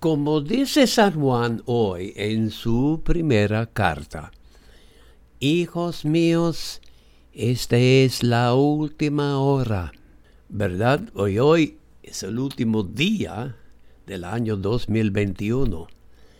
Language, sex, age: English, male, 60-79